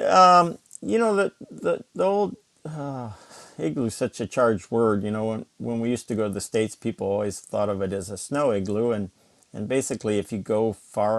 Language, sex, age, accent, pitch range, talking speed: English, male, 50-69, American, 100-115 Hz, 215 wpm